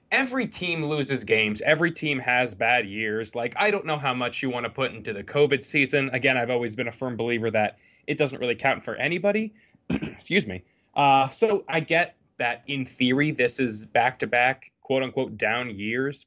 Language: English